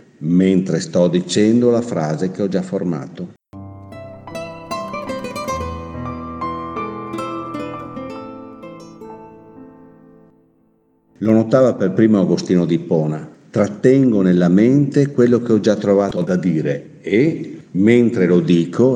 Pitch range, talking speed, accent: 85-110 Hz, 95 wpm, native